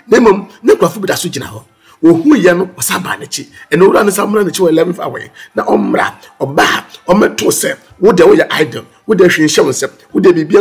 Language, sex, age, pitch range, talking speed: English, male, 50-69, 150-220 Hz, 130 wpm